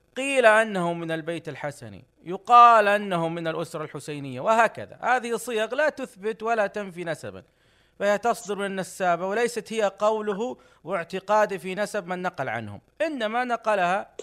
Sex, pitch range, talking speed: male, 150-200 Hz, 135 wpm